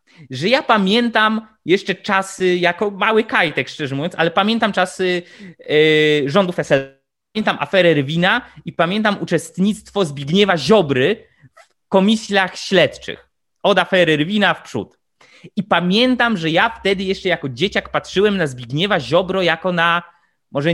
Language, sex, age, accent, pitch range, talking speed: Polish, male, 20-39, native, 155-200 Hz, 135 wpm